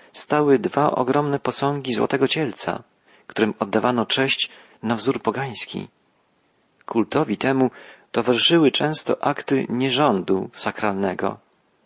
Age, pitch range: 40-59, 115-140 Hz